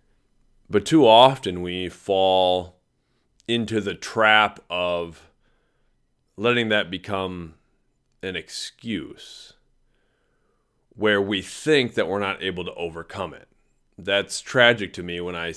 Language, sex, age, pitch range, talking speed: English, male, 30-49, 90-110 Hz, 115 wpm